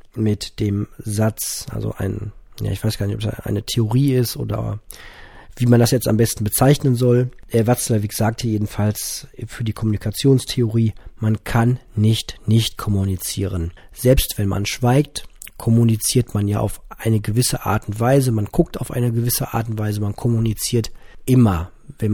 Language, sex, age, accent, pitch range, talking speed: German, male, 40-59, German, 105-130 Hz, 165 wpm